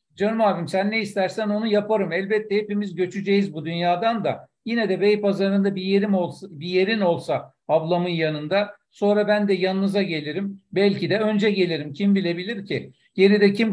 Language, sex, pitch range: Turkish, male, 175-205 Hz